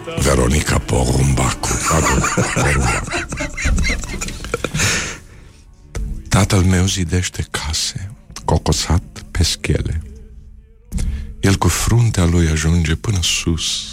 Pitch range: 75-95 Hz